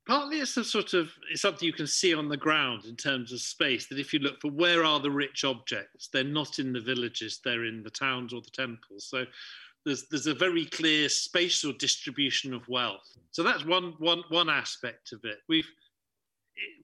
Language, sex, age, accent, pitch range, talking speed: English, male, 40-59, British, 130-165 Hz, 205 wpm